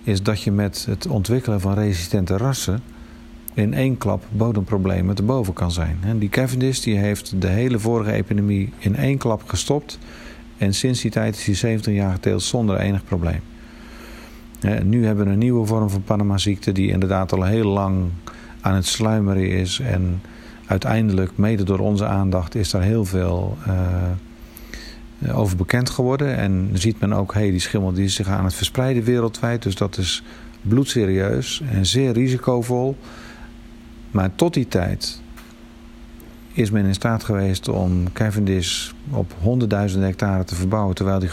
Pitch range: 95-115 Hz